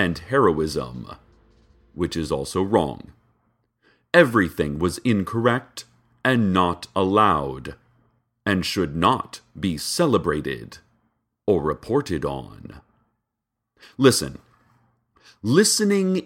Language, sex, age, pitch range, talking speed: English, male, 40-59, 95-130 Hz, 80 wpm